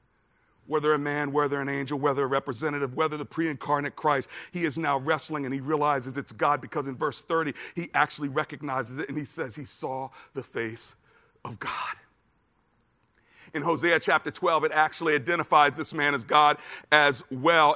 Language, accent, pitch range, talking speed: English, American, 140-165 Hz, 175 wpm